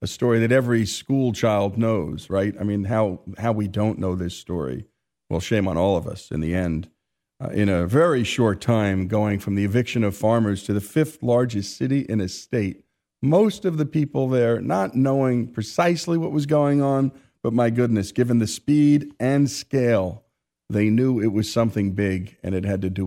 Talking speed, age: 200 wpm, 50-69